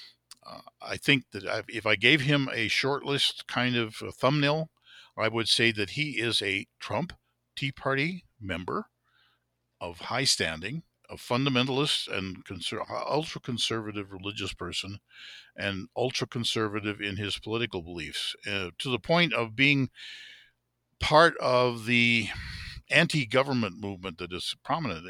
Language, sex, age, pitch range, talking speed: English, male, 50-69, 95-125 Hz, 135 wpm